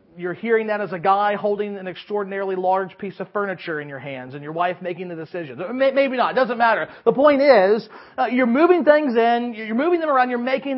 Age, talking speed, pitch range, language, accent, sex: 40-59, 230 wpm, 180-250 Hz, English, American, male